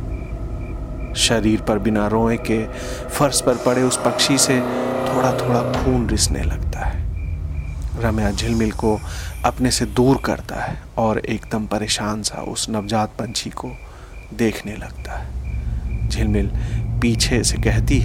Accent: native